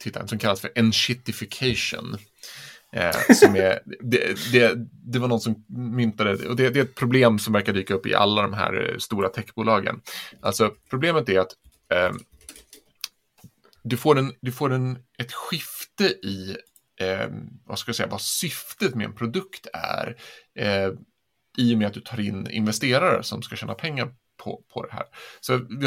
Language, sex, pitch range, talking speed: Swedish, male, 105-130 Hz, 170 wpm